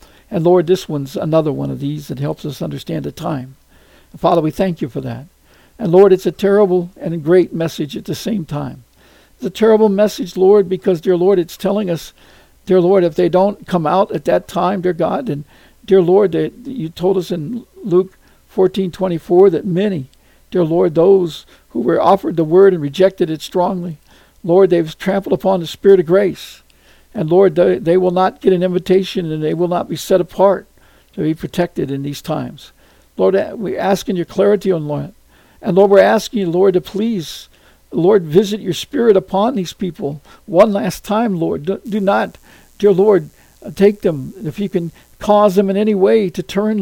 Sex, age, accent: male, 60-79, American